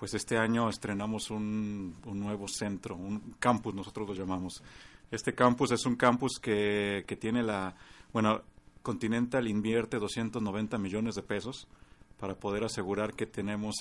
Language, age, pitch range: Spanish, 40-59, 100-115 Hz